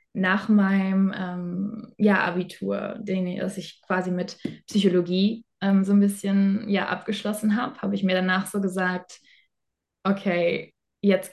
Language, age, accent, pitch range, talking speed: German, 20-39, German, 180-205 Hz, 145 wpm